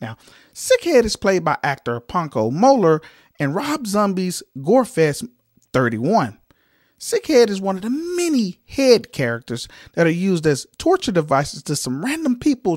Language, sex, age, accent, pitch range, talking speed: English, male, 40-59, American, 150-240 Hz, 145 wpm